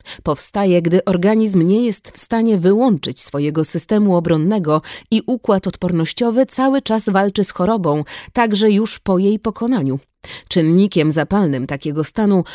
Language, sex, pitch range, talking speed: Polish, female, 170-220 Hz, 135 wpm